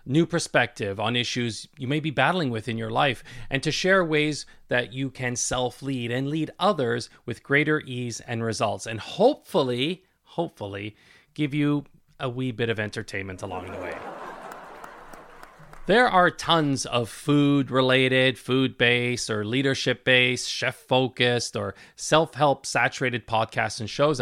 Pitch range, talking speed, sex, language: 115-155 Hz, 150 wpm, male, English